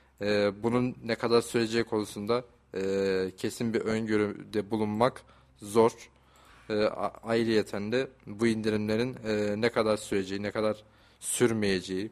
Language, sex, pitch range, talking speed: Turkish, male, 105-115 Hz, 120 wpm